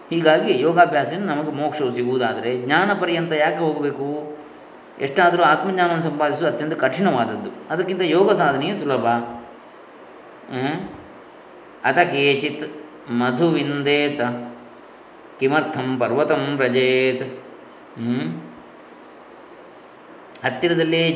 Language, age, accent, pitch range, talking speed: Kannada, 20-39, native, 120-150 Hz, 75 wpm